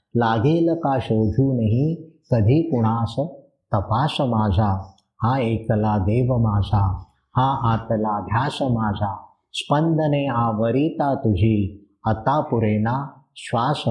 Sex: male